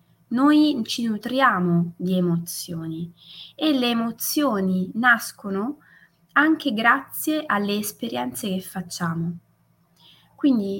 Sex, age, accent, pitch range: female, 20-39, native, 180-245 Hz